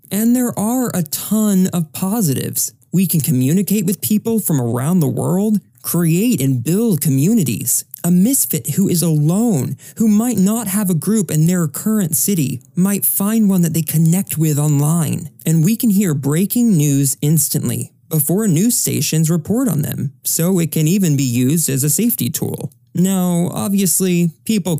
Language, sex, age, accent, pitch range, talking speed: English, male, 20-39, American, 140-190 Hz, 165 wpm